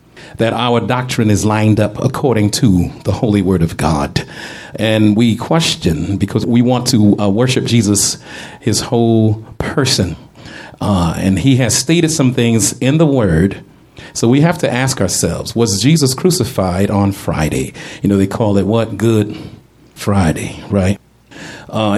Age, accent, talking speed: 40-59, American, 155 wpm